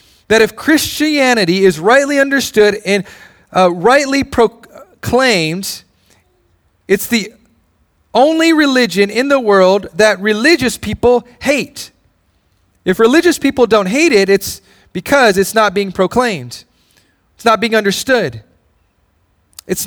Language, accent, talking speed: English, American, 120 wpm